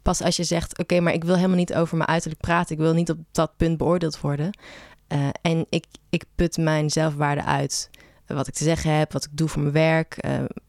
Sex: female